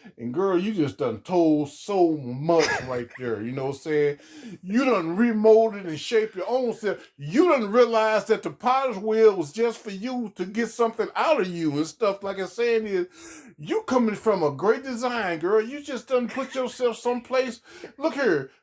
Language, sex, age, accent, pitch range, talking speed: English, male, 30-49, American, 205-260 Hz, 195 wpm